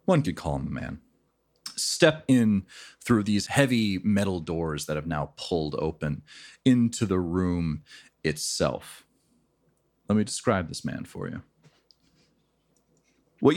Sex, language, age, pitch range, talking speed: male, English, 30-49, 80-115 Hz, 135 wpm